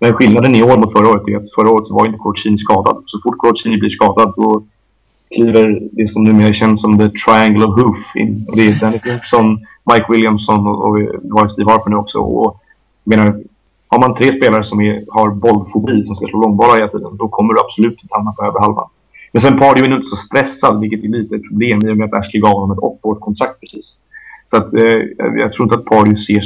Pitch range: 105-115 Hz